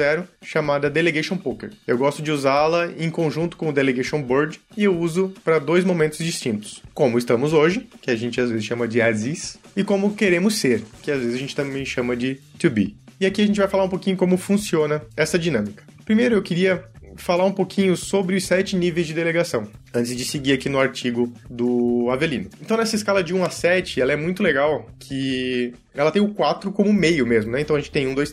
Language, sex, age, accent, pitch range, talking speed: Portuguese, male, 20-39, Brazilian, 135-185 Hz, 220 wpm